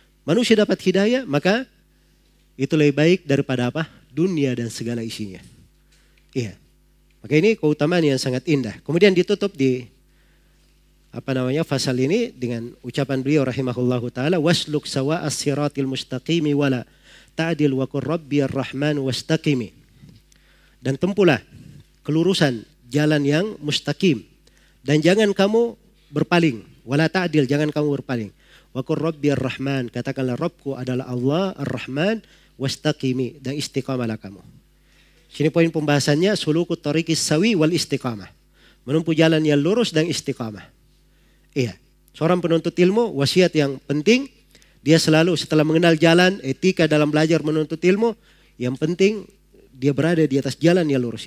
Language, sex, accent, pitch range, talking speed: Indonesian, male, native, 130-165 Hz, 125 wpm